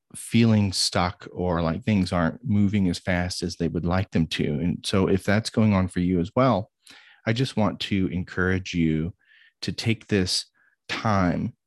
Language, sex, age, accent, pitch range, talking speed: English, male, 30-49, American, 90-110 Hz, 180 wpm